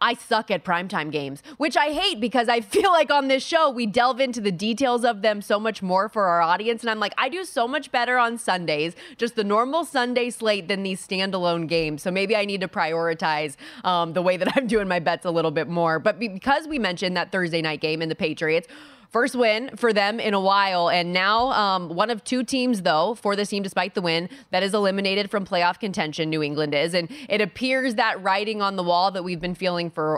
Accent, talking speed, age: American, 235 wpm, 20-39